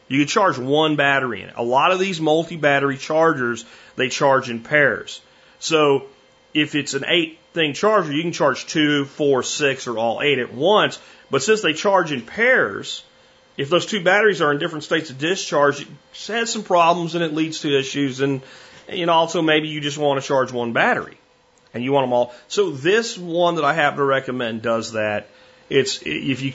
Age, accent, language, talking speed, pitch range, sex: 40-59, American, English, 200 wpm, 125-160 Hz, male